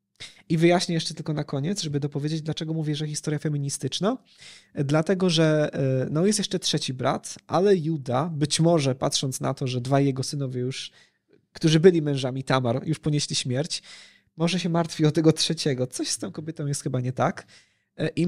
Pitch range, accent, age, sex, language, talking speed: 145-180 Hz, native, 20-39, male, Polish, 175 wpm